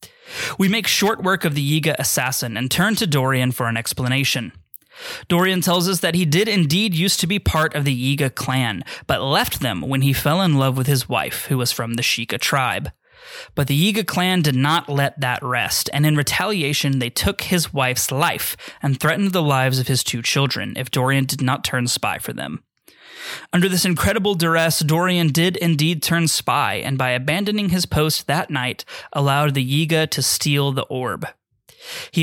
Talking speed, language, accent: 195 wpm, English, American